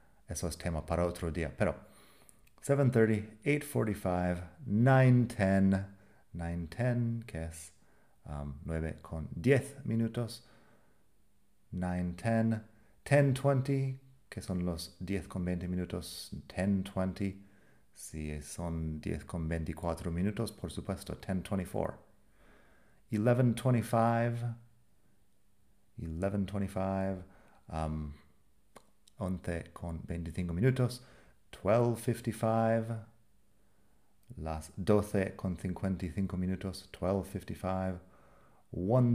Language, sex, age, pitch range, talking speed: Spanish, male, 40-59, 90-110 Hz, 80 wpm